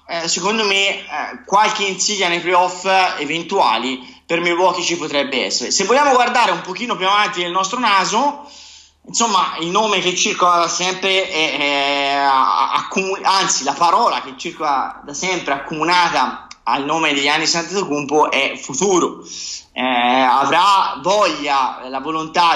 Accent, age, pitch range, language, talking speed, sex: native, 20-39, 150-185 Hz, Italian, 140 wpm, male